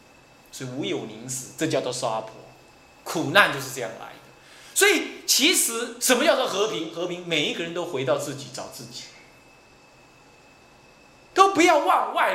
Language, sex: Chinese, male